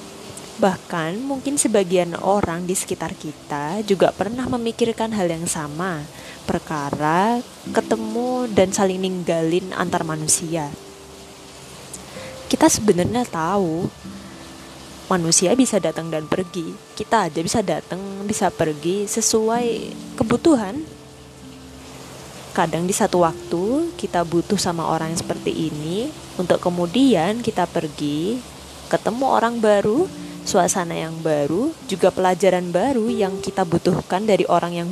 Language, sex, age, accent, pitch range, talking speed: Indonesian, female, 20-39, native, 165-215 Hz, 115 wpm